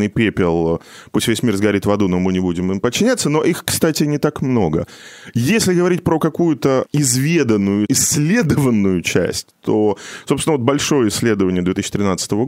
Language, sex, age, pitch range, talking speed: Russian, male, 20-39, 100-155 Hz, 155 wpm